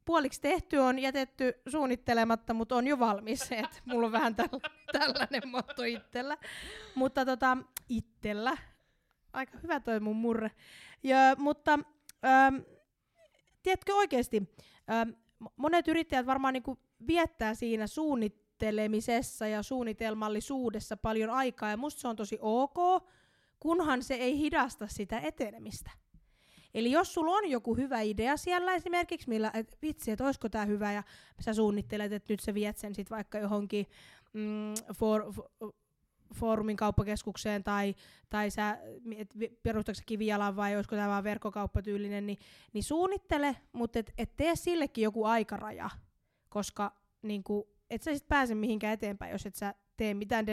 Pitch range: 210-265 Hz